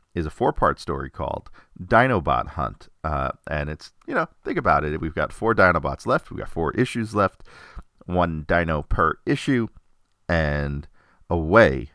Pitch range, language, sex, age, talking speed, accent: 80-110 Hz, English, male, 40-59, 155 wpm, American